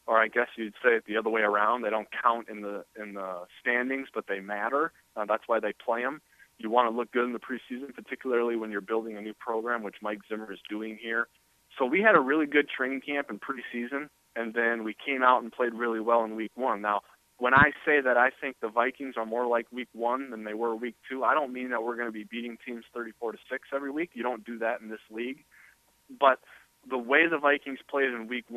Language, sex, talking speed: English, male, 250 wpm